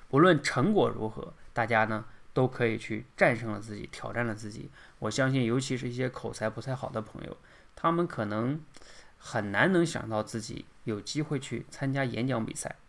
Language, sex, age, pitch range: Chinese, male, 20-39, 110-130 Hz